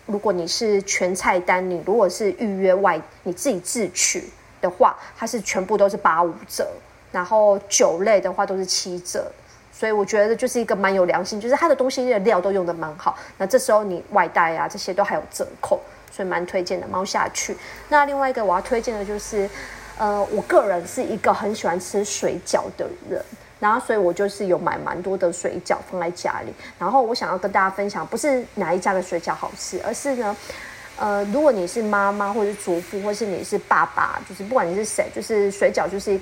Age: 30-49